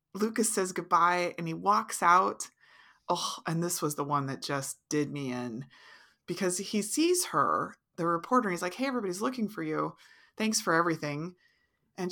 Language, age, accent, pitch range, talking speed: English, 30-49, American, 140-210 Hz, 175 wpm